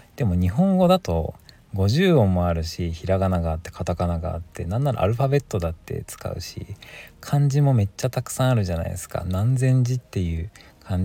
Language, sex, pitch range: Japanese, male, 85-120 Hz